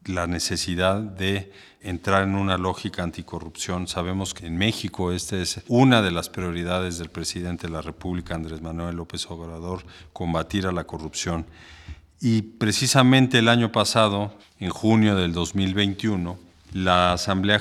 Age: 50-69